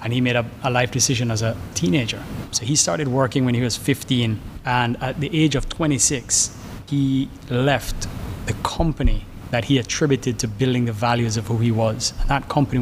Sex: male